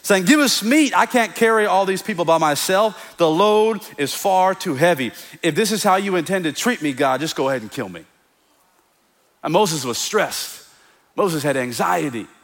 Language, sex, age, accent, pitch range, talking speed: English, male, 40-59, American, 140-200 Hz, 200 wpm